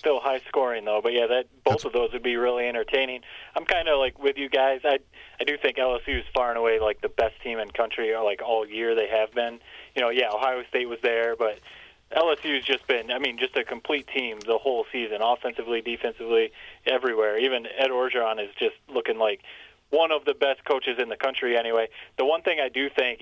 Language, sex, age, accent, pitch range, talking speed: English, male, 20-39, American, 120-150 Hz, 230 wpm